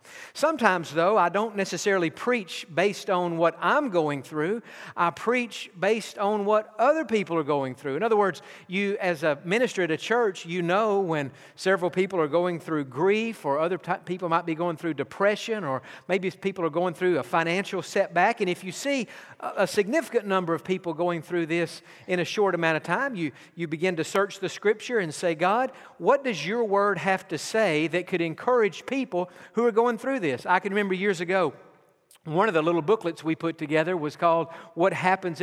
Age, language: 50-69, English